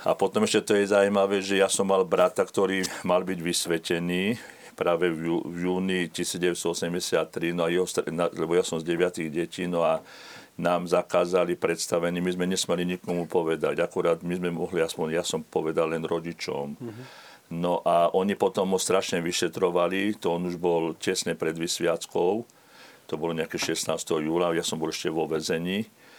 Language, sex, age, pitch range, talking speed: Slovak, male, 50-69, 85-100 Hz, 165 wpm